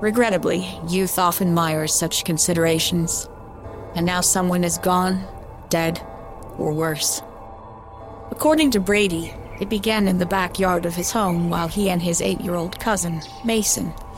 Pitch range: 135-195 Hz